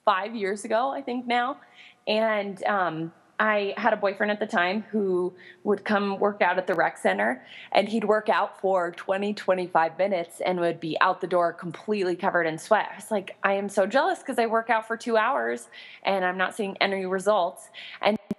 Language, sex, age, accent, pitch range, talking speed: English, female, 20-39, American, 175-210 Hz, 205 wpm